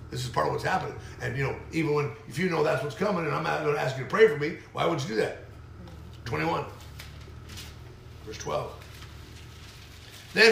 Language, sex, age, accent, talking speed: English, male, 50-69, American, 210 wpm